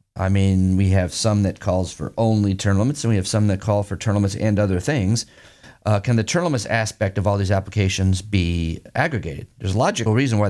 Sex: male